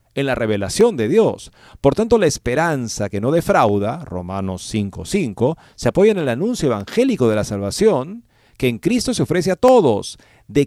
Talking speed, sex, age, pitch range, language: 180 wpm, male, 50-69, 105-150 Hz, Spanish